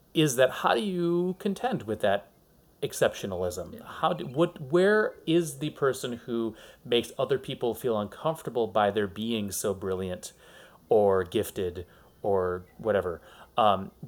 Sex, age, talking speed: male, 30-49, 135 wpm